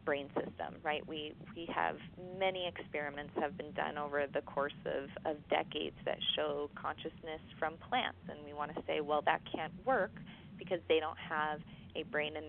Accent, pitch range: American, 155-190 Hz